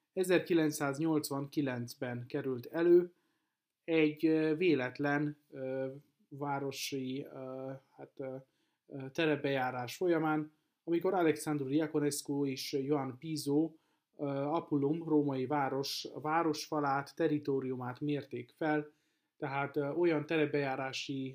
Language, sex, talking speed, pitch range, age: Hungarian, male, 70 wpm, 135-155 Hz, 30-49